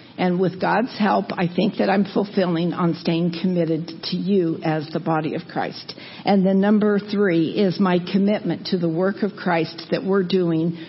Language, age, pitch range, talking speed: English, 50-69, 170-200 Hz, 185 wpm